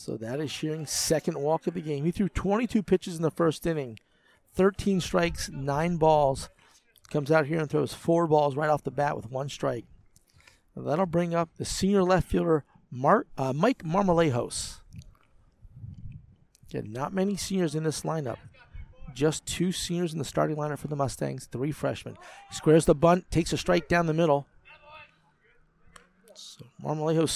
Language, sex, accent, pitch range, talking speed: English, male, American, 140-170 Hz, 160 wpm